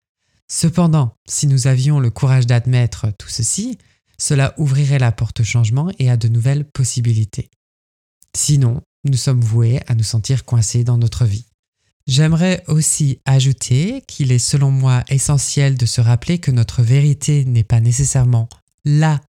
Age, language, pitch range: 20-39, French, 115-145 Hz